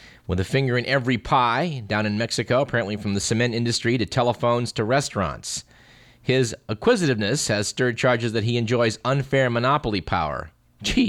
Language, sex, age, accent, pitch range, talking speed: English, male, 40-59, American, 105-140 Hz, 160 wpm